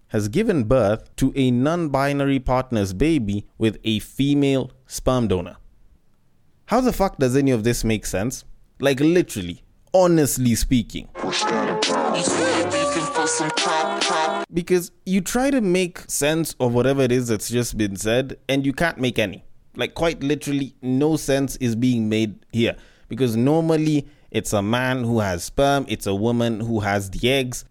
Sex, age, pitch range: male, 20-39, 110-140 Hz